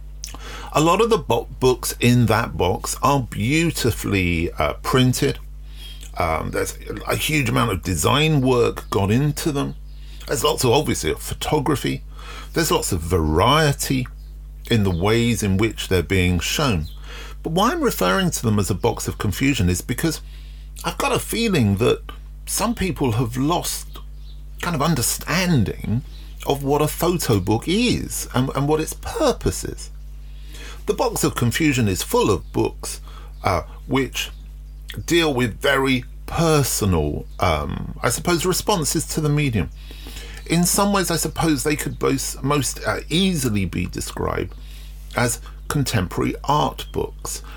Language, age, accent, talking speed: English, 40-59, British, 145 wpm